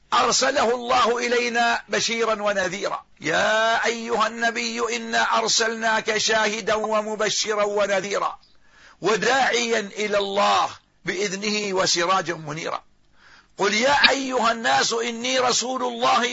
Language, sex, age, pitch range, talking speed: Arabic, male, 50-69, 190-235 Hz, 95 wpm